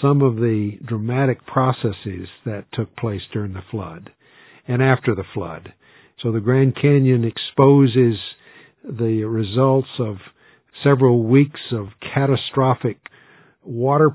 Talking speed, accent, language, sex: 120 wpm, American, English, male